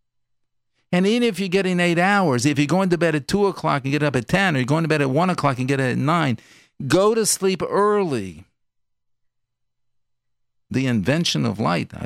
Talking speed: 205 wpm